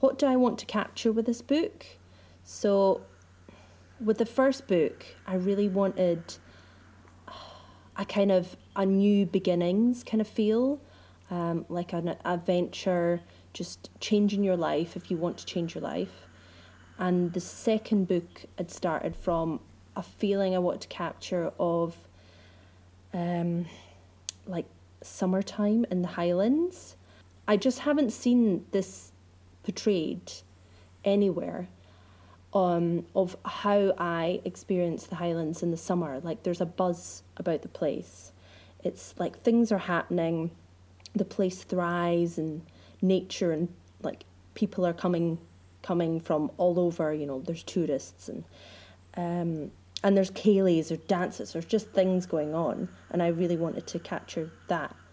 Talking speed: 140 wpm